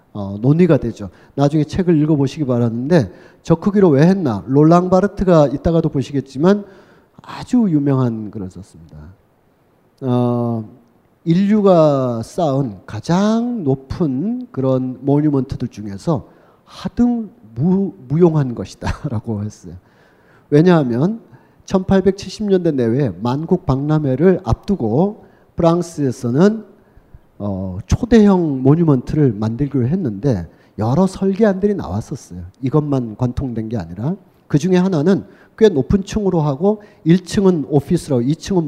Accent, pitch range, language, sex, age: native, 120-185 Hz, Korean, male, 40-59